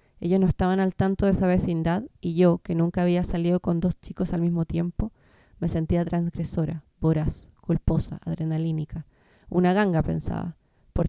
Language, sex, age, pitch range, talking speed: Spanish, female, 20-39, 170-185 Hz, 160 wpm